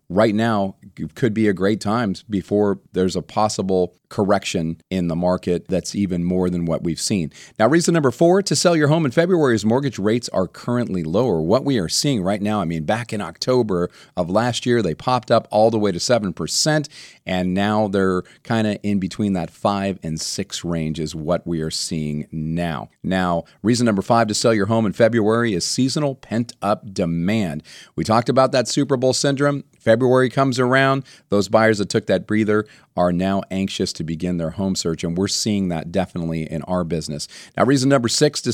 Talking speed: 200 wpm